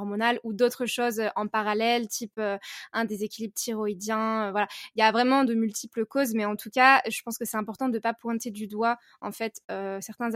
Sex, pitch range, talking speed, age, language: female, 210-240 Hz, 220 wpm, 20-39, French